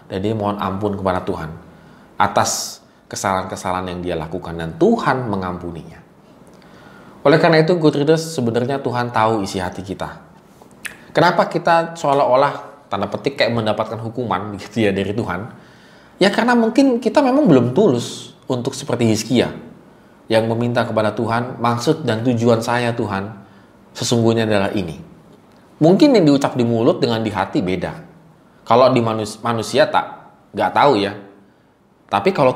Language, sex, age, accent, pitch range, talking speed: Indonesian, male, 20-39, native, 100-130 Hz, 140 wpm